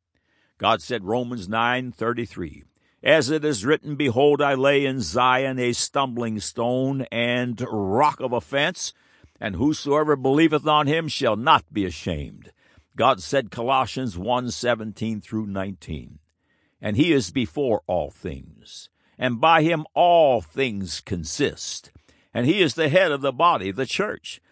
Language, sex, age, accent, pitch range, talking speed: English, male, 60-79, American, 100-150 Hz, 135 wpm